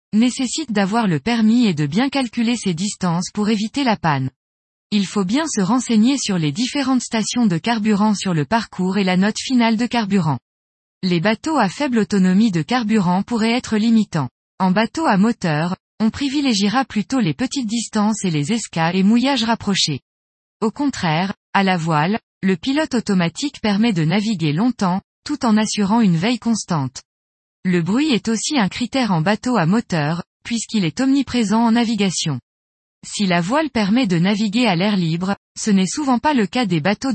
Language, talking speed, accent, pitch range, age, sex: French, 180 wpm, French, 180-235 Hz, 20-39, female